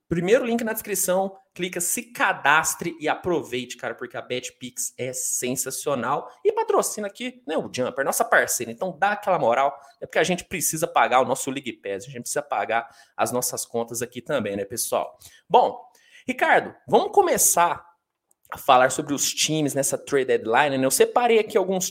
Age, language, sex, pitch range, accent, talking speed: 20-39, Portuguese, male, 135-200 Hz, Brazilian, 180 wpm